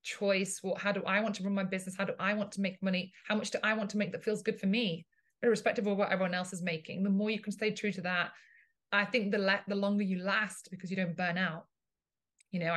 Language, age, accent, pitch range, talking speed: English, 20-39, British, 180-210 Hz, 275 wpm